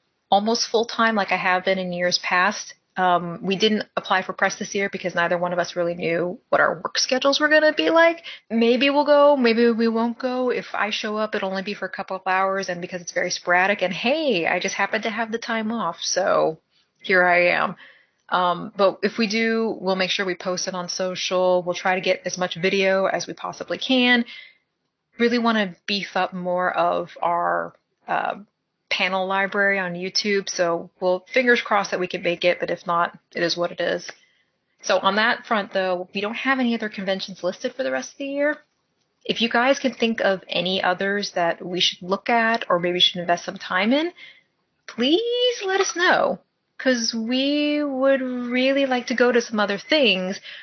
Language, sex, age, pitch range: English, female, 30-49, 185-240 Hz